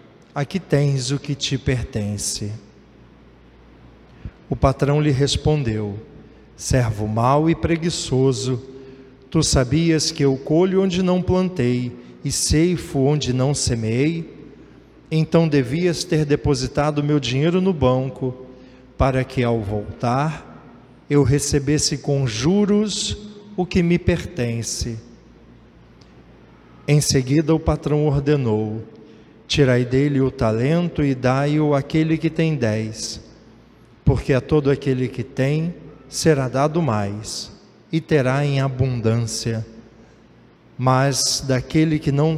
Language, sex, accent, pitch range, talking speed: Portuguese, male, Brazilian, 120-160 Hz, 110 wpm